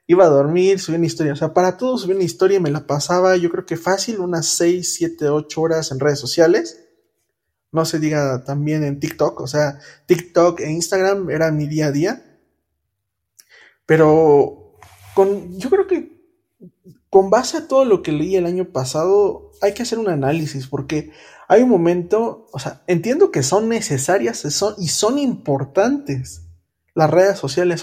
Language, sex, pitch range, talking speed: Spanish, male, 155-205 Hz, 170 wpm